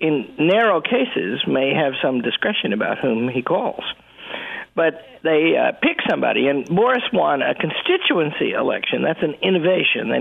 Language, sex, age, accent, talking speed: English, male, 50-69, American, 155 wpm